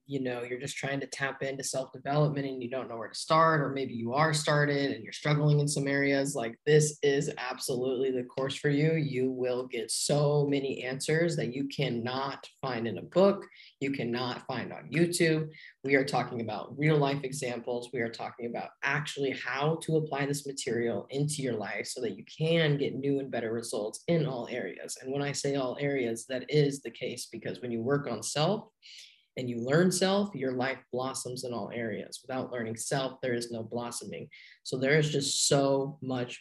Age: 20-39